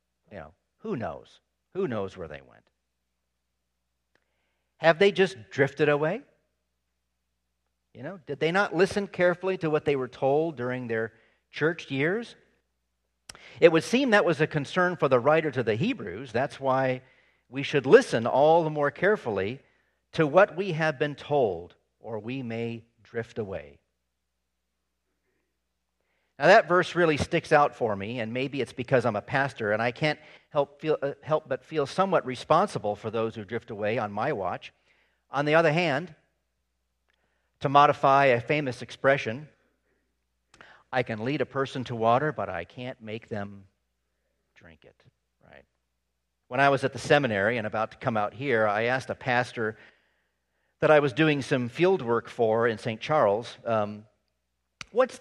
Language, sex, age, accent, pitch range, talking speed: English, male, 50-69, American, 95-150 Hz, 165 wpm